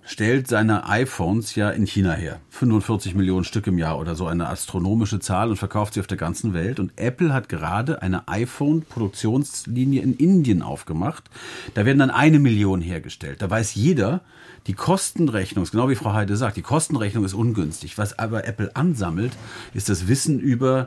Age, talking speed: 40-59, 175 wpm